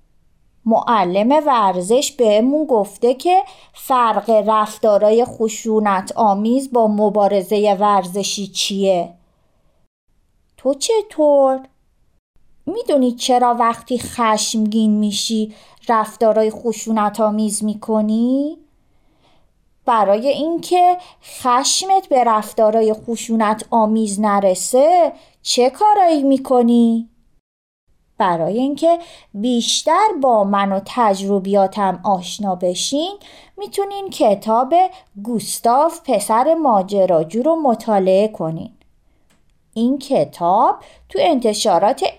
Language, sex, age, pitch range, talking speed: Persian, female, 30-49, 205-275 Hz, 80 wpm